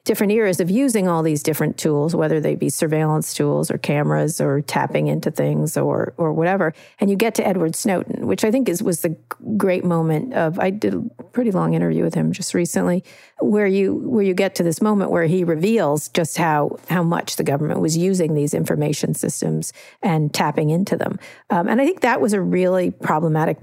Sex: female